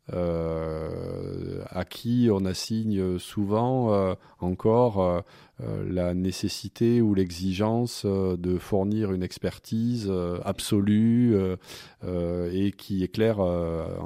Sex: male